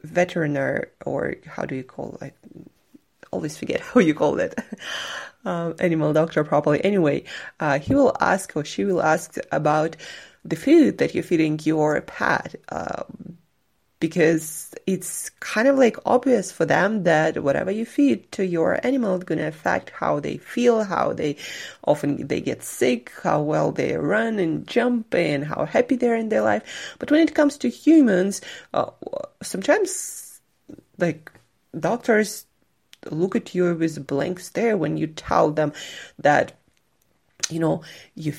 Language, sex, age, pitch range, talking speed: English, female, 20-39, 155-215 Hz, 160 wpm